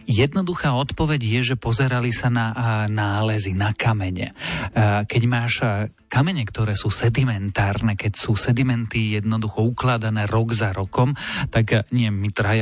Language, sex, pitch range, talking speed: Slovak, male, 105-120 Hz, 135 wpm